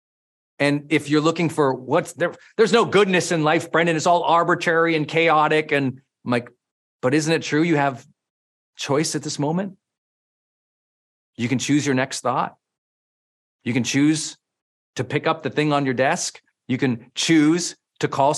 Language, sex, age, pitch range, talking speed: English, male, 40-59, 135-190 Hz, 175 wpm